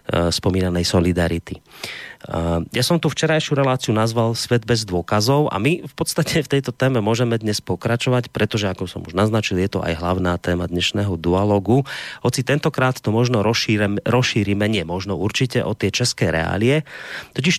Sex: male